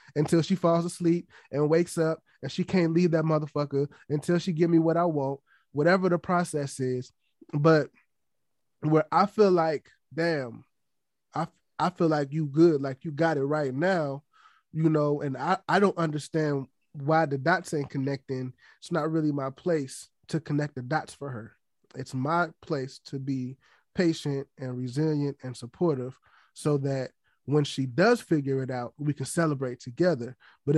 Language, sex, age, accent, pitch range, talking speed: English, male, 20-39, American, 140-175 Hz, 170 wpm